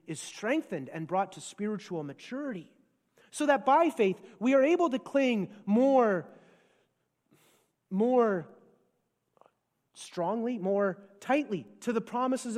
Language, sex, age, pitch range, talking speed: English, male, 30-49, 190-245 Hz, 115 wpm